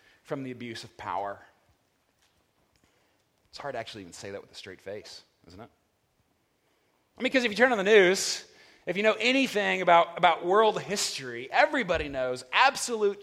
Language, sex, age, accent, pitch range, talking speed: English, male, 30-49, American, 140-195 Hz, 170 wpm